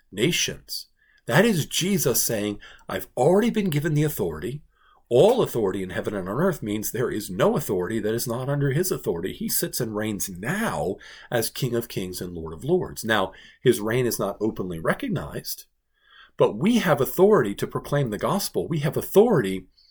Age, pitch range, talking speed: 50-69, 105-175 Hz, 180 wpm